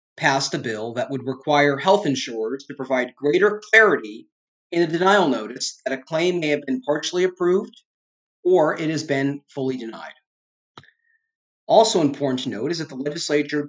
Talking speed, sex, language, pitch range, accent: 165 wpm, male, English, 135-175 Hz, American